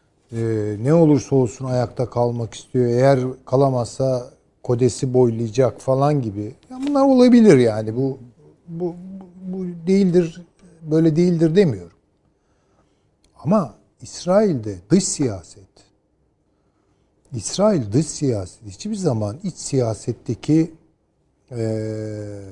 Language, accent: Turkish, native